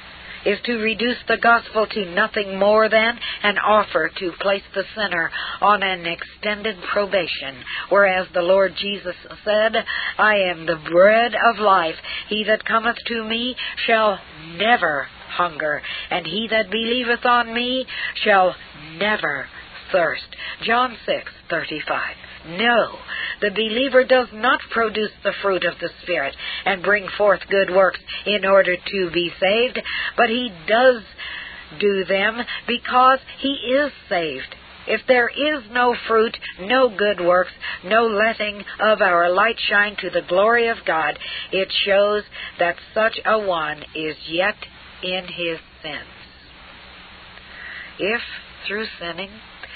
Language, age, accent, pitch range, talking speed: English, 60-79, American, 185-230 Hz, 135 wpm